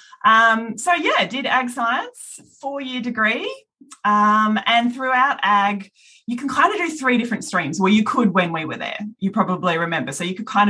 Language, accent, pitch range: English, Australian, 185-260 Hz